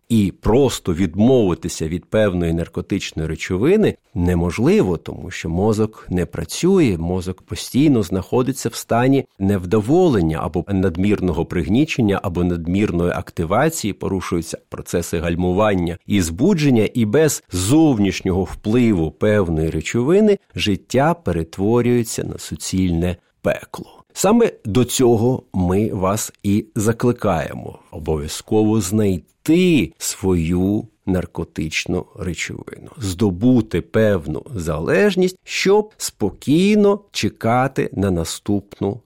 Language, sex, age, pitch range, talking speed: Ukrainian, male, 50-69, 90-120 Hz, 95 wpm